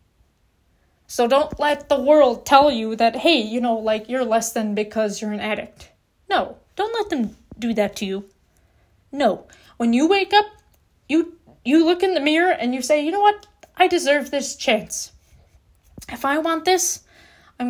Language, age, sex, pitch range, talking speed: English, 20-39, female, 215-290 Hz, 180 wpm